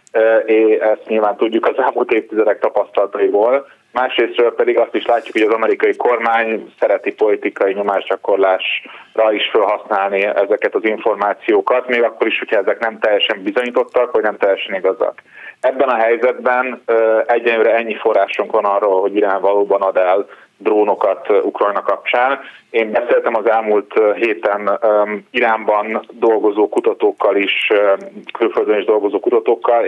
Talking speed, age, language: 135 wpm, 30-49, Hungarian